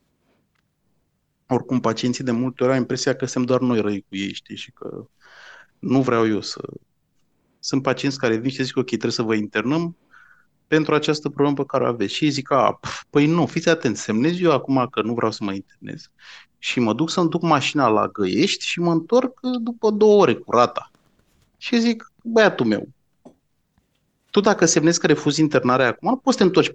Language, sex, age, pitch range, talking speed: Romanian, male, 30-49, 125-170 Hz, 195 wpm